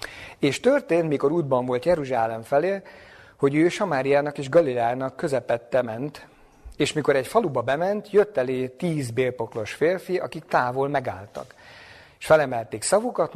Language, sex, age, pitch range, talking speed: Hungarian, male, 50-69, 120-165 Hz, 135 wpm